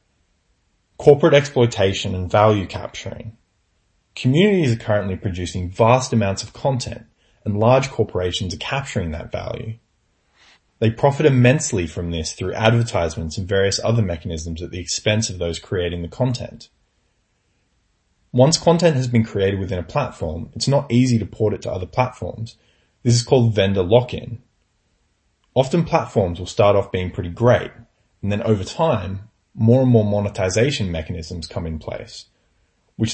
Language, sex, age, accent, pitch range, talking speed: English, male, 20-39, Australian, 90-120 Hz, 150 wpm